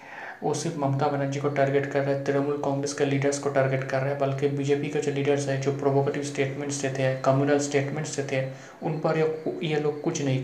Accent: native